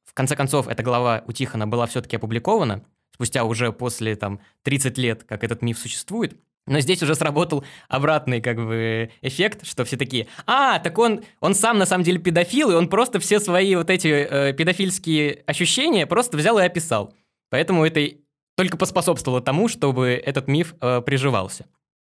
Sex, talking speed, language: male, 170 wpm, Russian